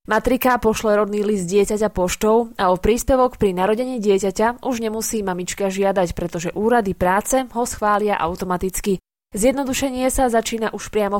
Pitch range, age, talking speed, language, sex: 190-235 Hz, 20-39, 145 wpm, Slovak, female